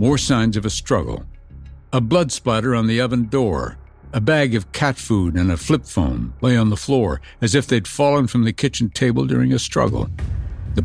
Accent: American